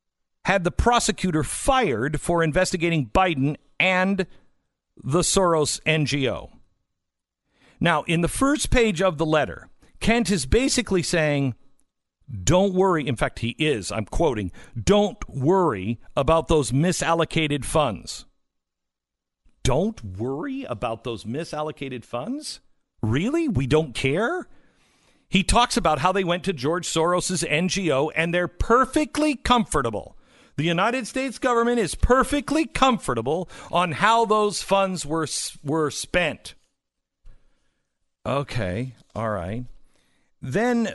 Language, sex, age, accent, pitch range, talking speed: English, male, 50-69, American, 140-195 Hz, 115 wpm